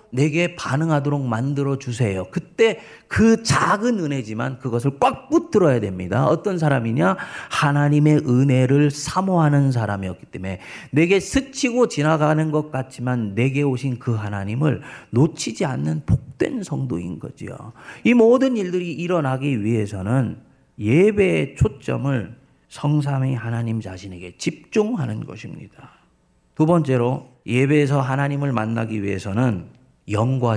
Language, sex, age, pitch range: Korean, male, 40-59, 120-180 Hz